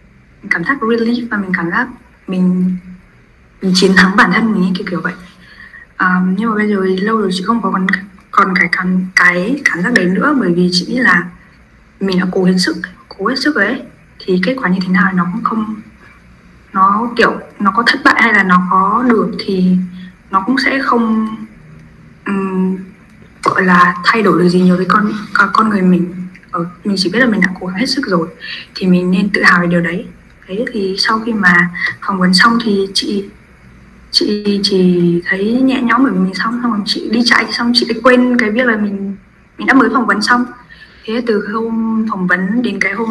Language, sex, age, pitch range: Vietnamese, female, 20-39, 185-225 Hz